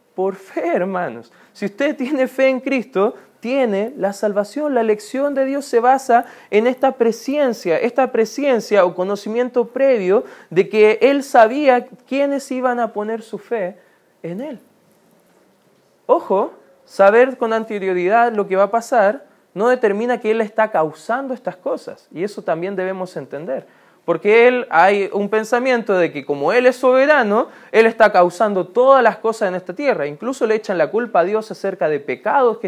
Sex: male